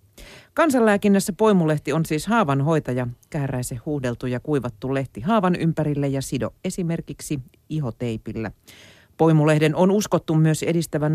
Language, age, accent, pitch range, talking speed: Finnish, 40-59, native, 120-165 Hz, 115 wpm